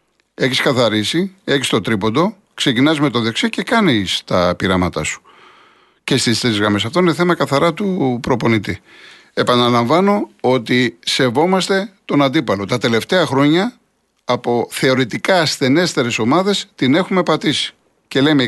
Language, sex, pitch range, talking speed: Greek, male, 120-165 Hz, 135 wpm